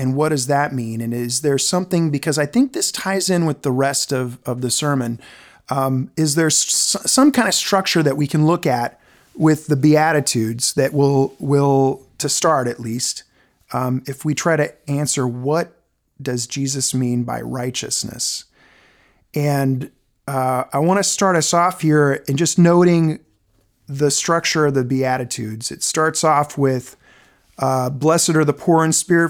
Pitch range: 135-165 Hz